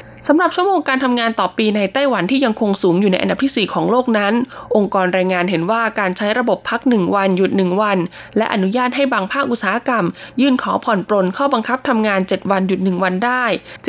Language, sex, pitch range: Thai, female, 185-245 Hz